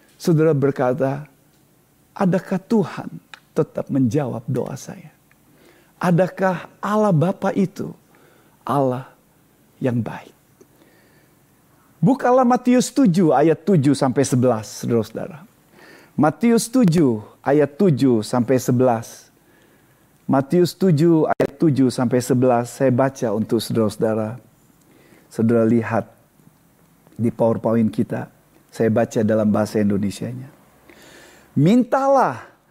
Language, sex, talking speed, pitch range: Indonesian, male, 95 wpm, 120-190 Hz